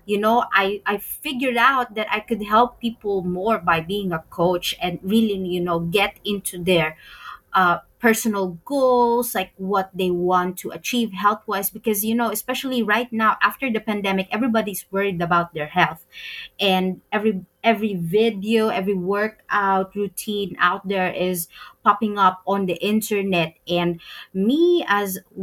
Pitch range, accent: 180-225 Hz, Filipino